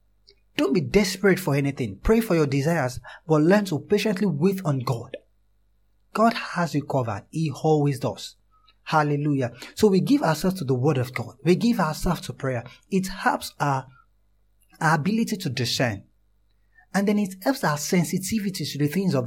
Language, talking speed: English, 165 wpm